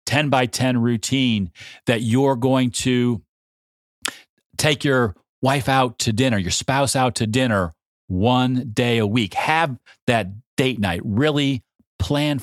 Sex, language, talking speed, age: male, English, 140 wpm, 40-59